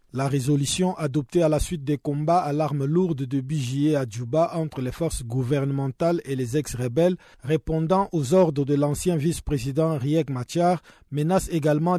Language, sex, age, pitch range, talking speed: French, male, 50-69, 135-165 Hz, 170 wpm